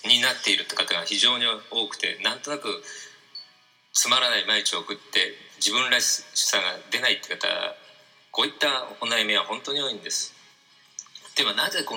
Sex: male